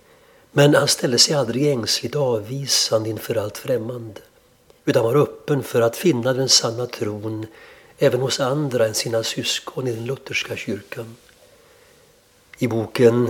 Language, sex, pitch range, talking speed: Swedish, male, 110-130 Hz, 140 wpm